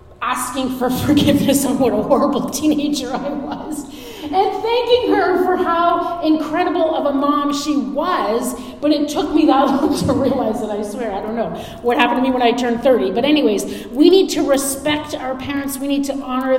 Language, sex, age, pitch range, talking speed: English, female, 40-59, 195-275 Hz, 200 wpm